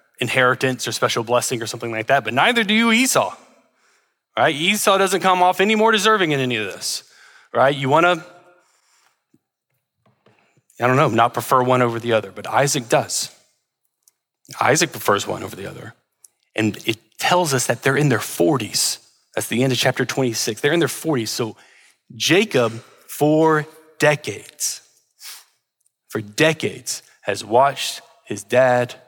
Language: English